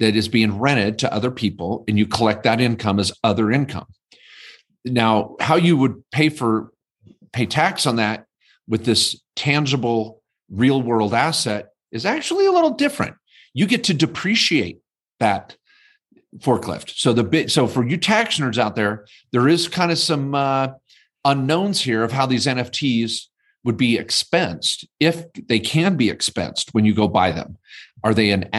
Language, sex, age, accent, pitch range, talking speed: English, male, 50-69, American, 110-160 Hz, 170 wpm